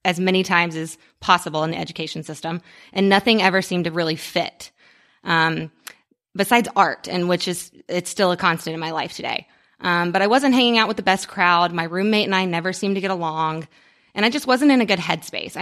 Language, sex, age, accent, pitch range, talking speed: English, female, 20-39, American, 170-195 Hz, 220 wpm